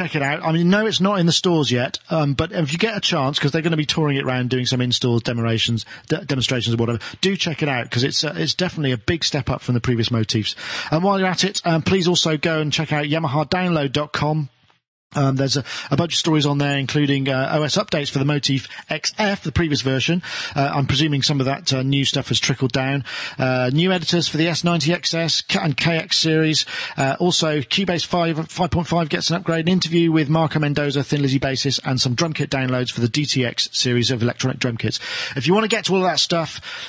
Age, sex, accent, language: 40-59, male, British, English